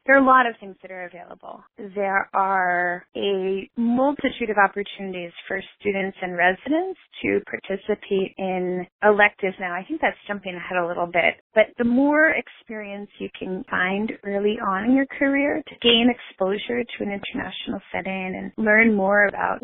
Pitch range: 190-240 Hz